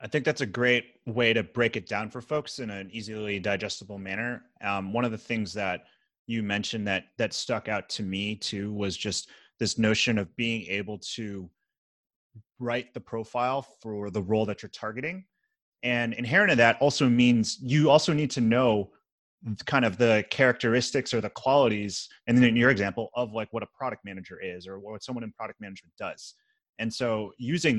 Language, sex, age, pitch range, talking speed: English, male, 30-49, 105-125 Hz, 190 wpm